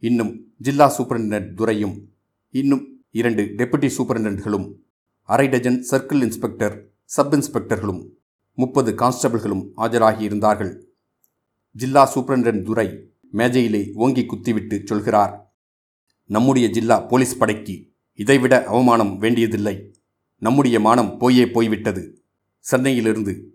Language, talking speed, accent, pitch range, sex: Tamil, 90 wpm, native, 105-125 Hz, male